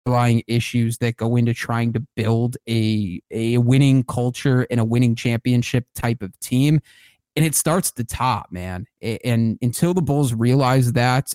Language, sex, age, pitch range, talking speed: English, male, 30-49, 115-135 Hz, 175 wpm